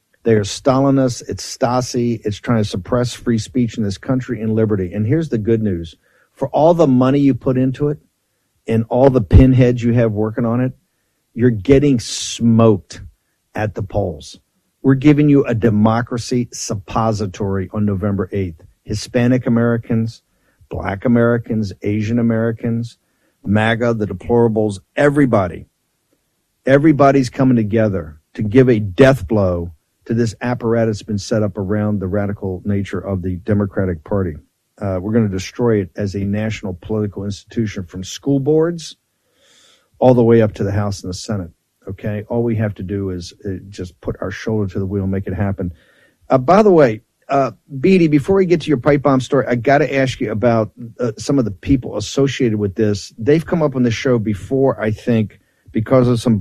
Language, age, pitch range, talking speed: English, 50-69, 100-125 Hz, 180 wpm